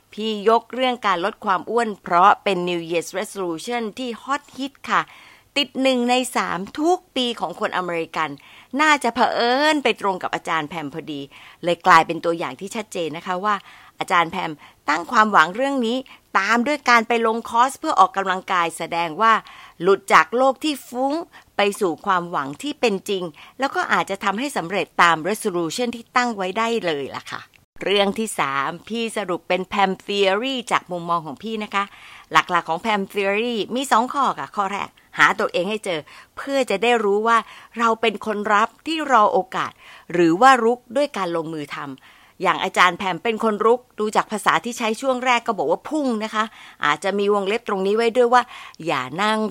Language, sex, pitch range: Thai, female, 180-245 Hz